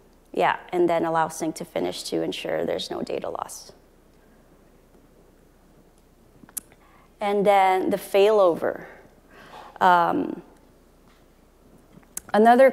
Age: 30-49